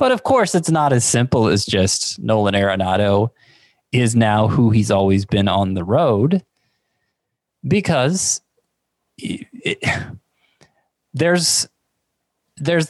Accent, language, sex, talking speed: American, English, male, 115 wpm